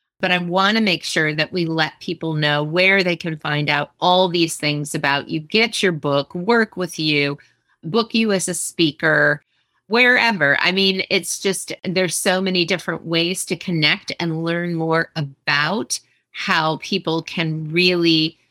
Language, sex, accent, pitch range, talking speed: English, female, American, 160-195 Hz, 170 wpm